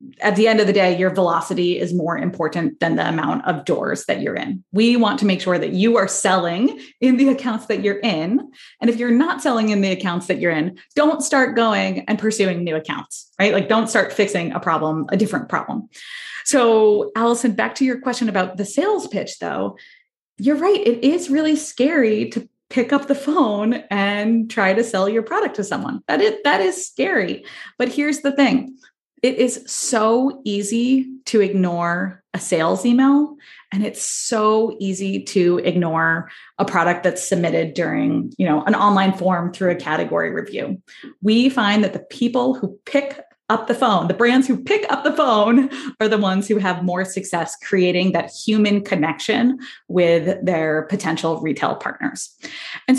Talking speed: 185 wpm